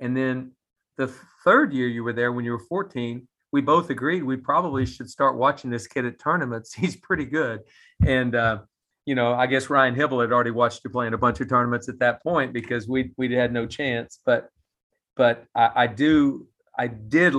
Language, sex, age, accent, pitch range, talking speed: English, male, 40-59, American, 120-140 Hz, 205 wpm